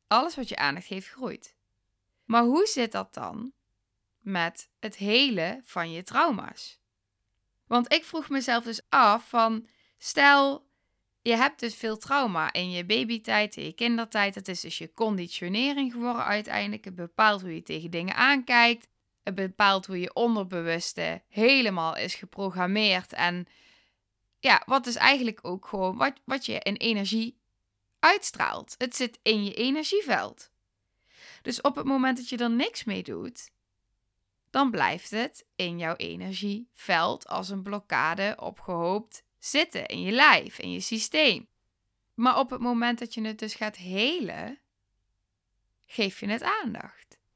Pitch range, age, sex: 185-255 Hz, 20-39, female